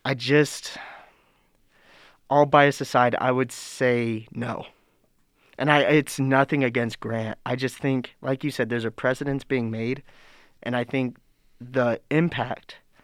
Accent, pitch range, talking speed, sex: American, 115-135 Hz, 145 wpm, male